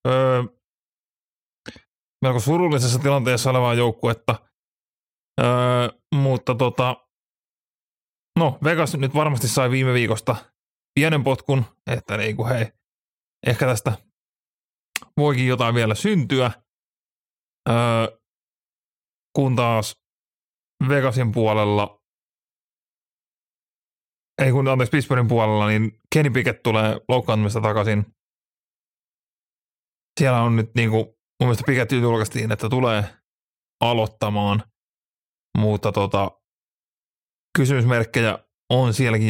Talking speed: 90 wpm